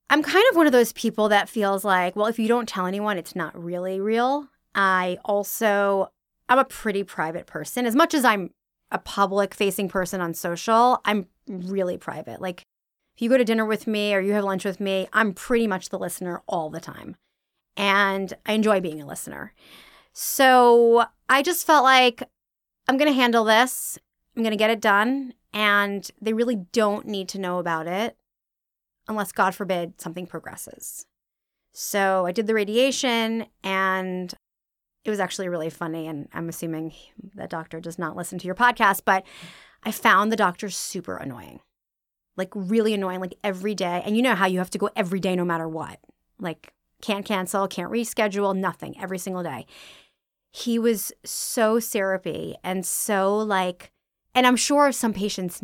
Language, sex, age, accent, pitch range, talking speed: English, female, 20-39, American, 185-225 Hz, 180 wpm